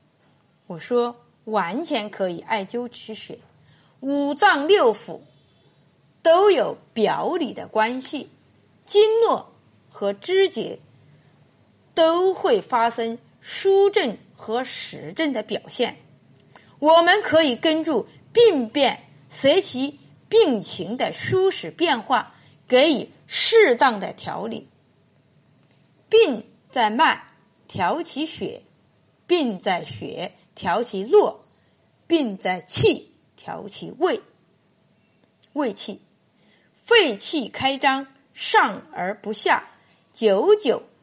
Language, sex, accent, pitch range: Chinese, female, native, 225-375 Hz